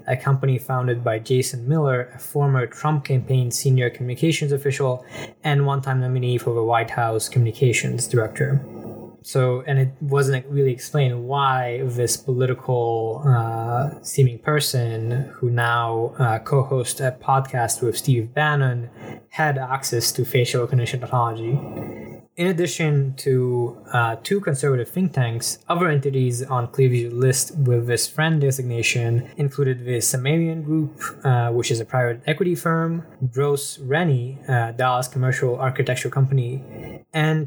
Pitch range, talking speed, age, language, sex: 120-140 Hz, 135 wpm, 20-39, English, male